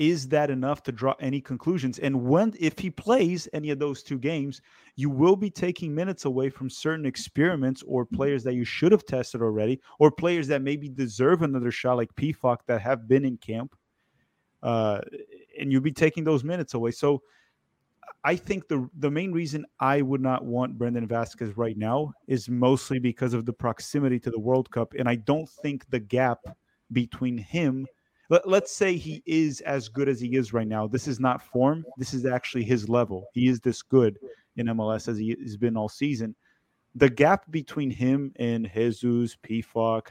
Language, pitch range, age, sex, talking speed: English, 120-150 Hz, 30-49, male, 195 wpm